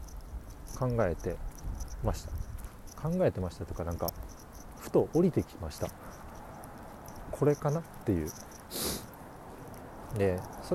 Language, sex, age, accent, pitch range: Japanese, male, 40-59, native, 80-115 Hz